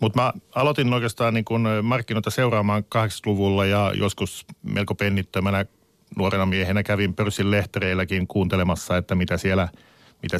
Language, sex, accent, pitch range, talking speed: Finnish, male, native, 90-100 Hz, 135 wpm